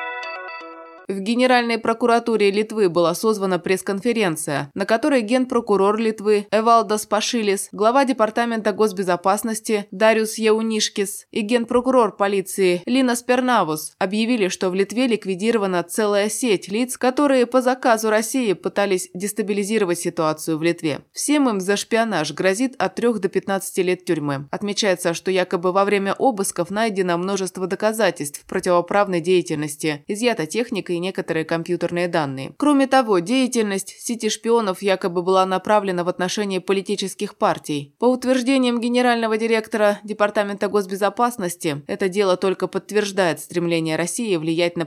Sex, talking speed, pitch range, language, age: female, 125 wpm, 175-225 Hz, Russian, 20-39